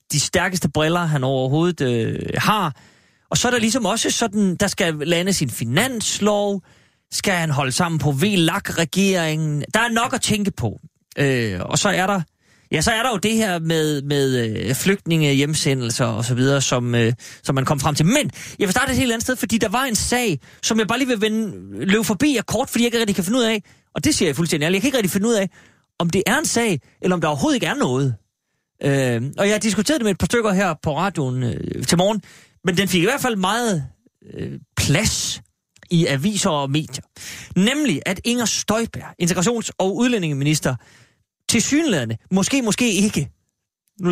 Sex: male